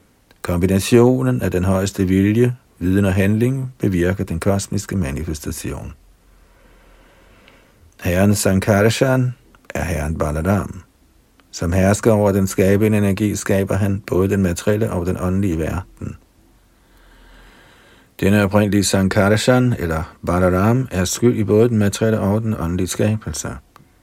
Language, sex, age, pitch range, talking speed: Danish, male, 50-69, 85-110 Hz, 115 wpm